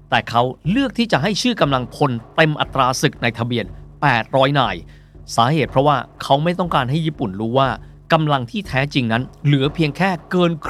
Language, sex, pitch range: Thai, male, 115-175 Hz